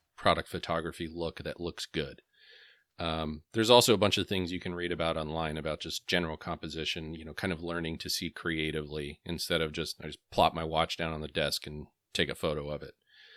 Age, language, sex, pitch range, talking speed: 30-49, English, male, 80-100 Hz, 215 wpm